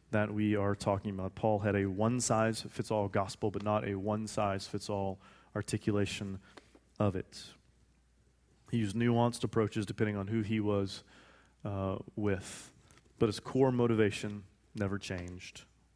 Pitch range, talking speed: 105-120 Hz, 130 wpm